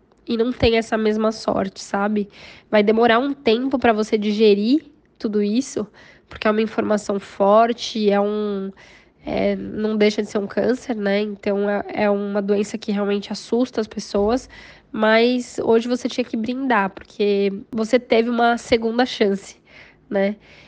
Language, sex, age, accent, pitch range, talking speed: Portuguese, female, 10-29, Brazilian, 215-260 Hz, 155 wpm